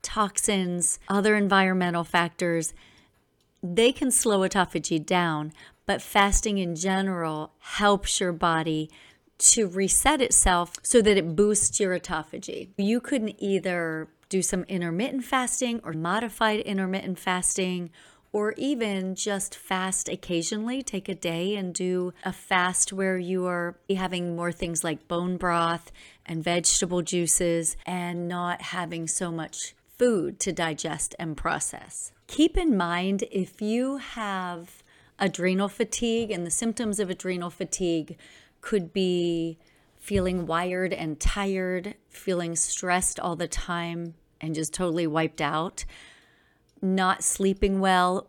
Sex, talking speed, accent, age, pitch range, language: female, 130 wpm, American, 40-59, 170-200 Hz, English